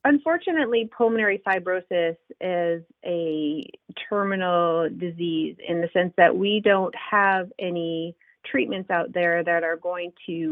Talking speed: 125 wpm